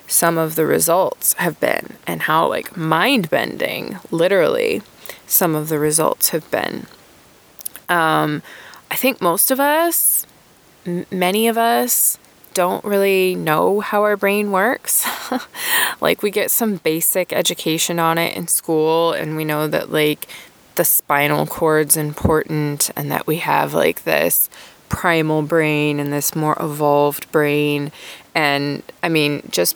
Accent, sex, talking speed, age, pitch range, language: American, female, 140 wpm, 20-39, 150-180 Hz, English